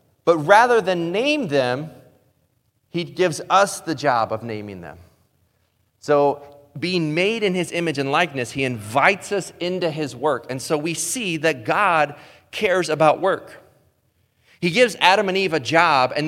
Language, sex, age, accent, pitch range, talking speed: English, male, 30-49, American, 140-190 Hz, 160 wpm